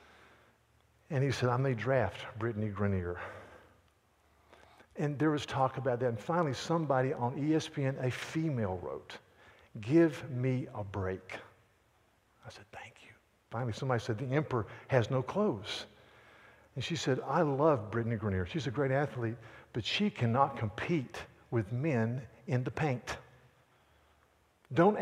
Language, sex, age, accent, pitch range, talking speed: English, male, 60-79, American, 120-170 Hz, 140 wpm